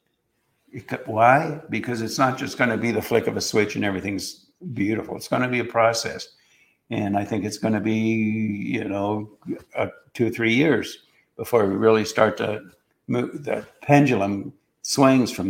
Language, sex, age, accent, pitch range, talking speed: English, male, 60-79, American, 110-150 Hz, 180 wpm